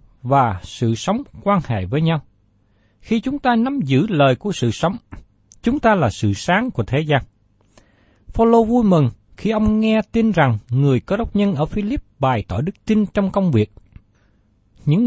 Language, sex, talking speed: Vietnamese, male, 185 wpm